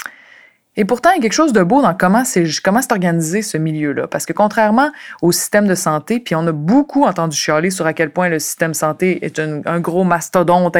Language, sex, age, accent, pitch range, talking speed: French, female, 20-39, Canadian, 170-225 Hz, 235 wpm